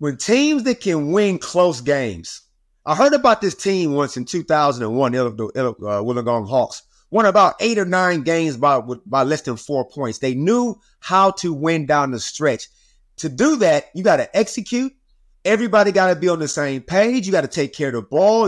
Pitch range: 130-210 Hz